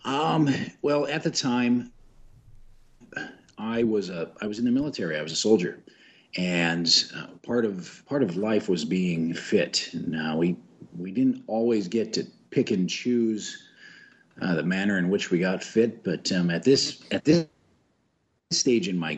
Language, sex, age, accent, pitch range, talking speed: English, male, 40-59, American, 85-120 Hz, 170 wpm